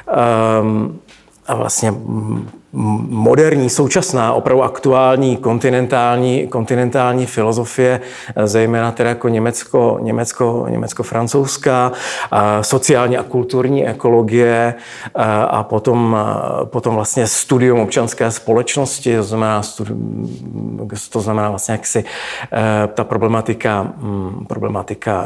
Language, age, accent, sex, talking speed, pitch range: Czech, 40-59, native, male, 90 wpm, 115-130 Hz